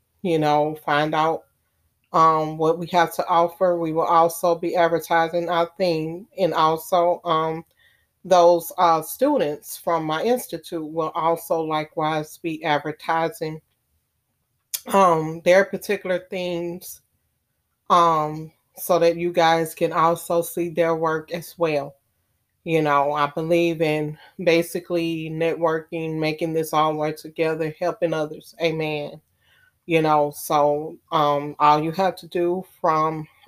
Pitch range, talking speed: 155-170 Hz, 130 wpm